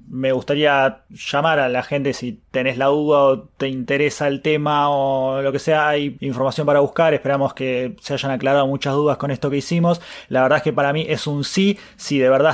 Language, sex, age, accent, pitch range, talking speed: Spanish, male, 20-39, Argentinian, 130-145 Hz, 220 wpm